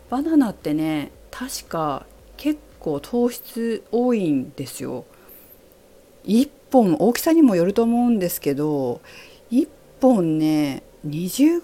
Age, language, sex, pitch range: 40-59, Japanese, female, 160-245 Hz